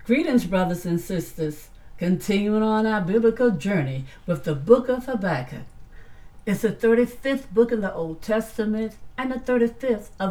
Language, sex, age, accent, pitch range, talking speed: English, female, 60-79, American, 165-250 Hz, 150 wpm